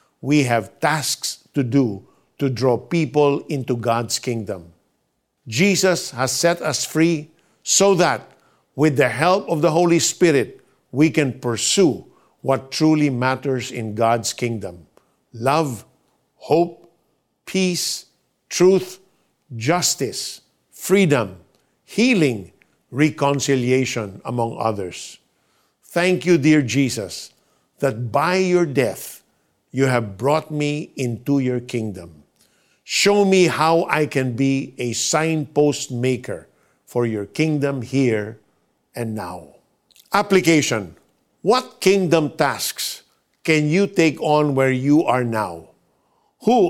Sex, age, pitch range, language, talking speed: male, 50-69, 125-160 Hz, Filipino, 110 wpm